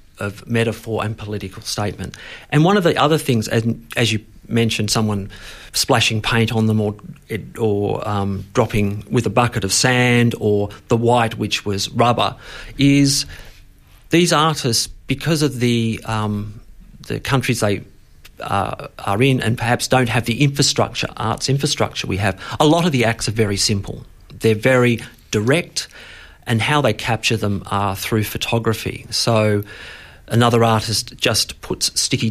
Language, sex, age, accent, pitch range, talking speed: English, male, 50-69, Australian, 105-125 Hz, 150 wpm